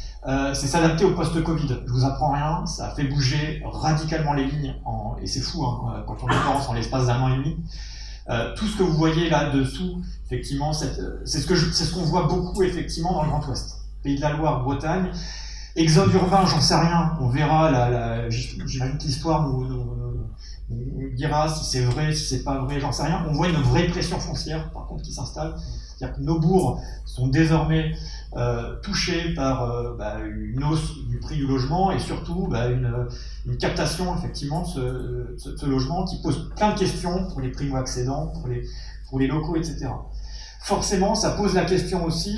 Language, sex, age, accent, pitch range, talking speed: English, male, 30-49, French, 125-165 Hz, 205 wpm